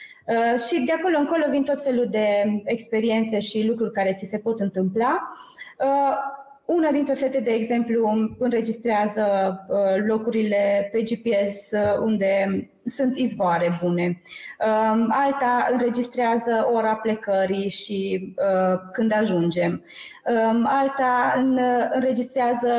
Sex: female